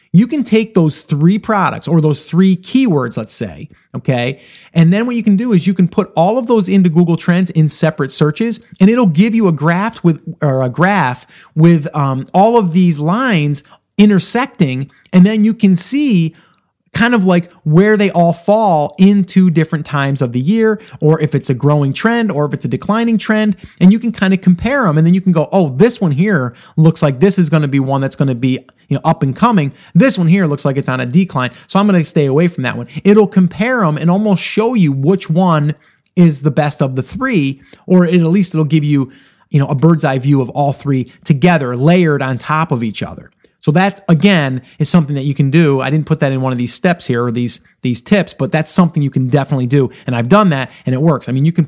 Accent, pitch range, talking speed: American, 145-190 Hz, 245 wpm